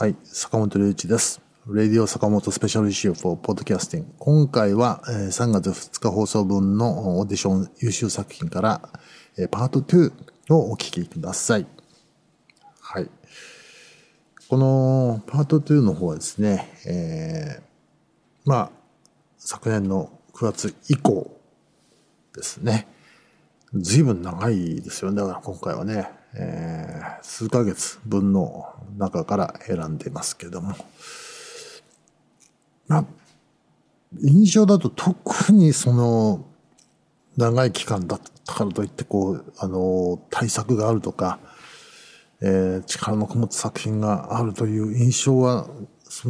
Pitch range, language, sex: 100-135 Hz, Japanese, male